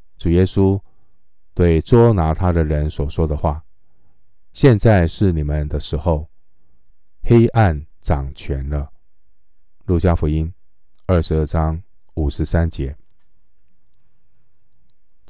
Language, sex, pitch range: Chinese, male, 80-100 Hz